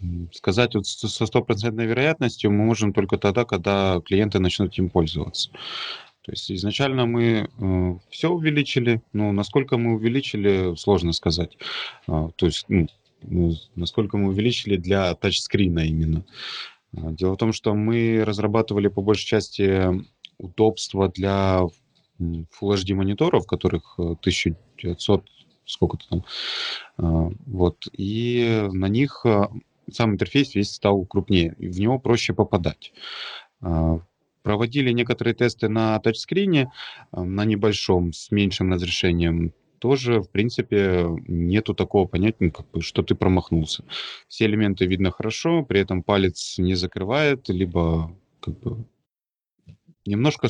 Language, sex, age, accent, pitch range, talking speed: Ukrainian, male, 20-39, native, 90-115 Hz, 120 wpm